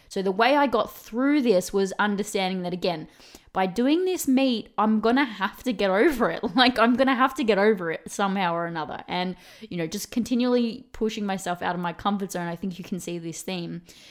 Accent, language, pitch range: Australian, English, 185-225 Hz